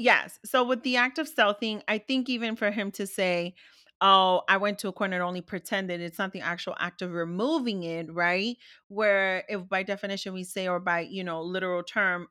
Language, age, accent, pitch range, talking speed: English, 30-49, American, 180-220 Hz, 215 wpm